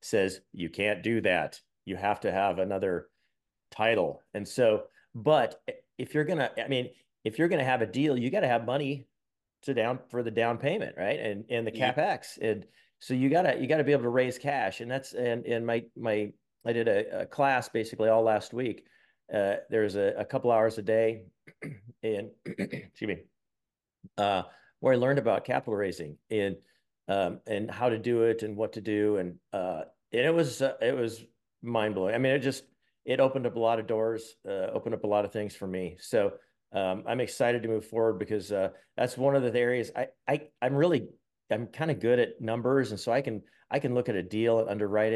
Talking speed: 215 wpm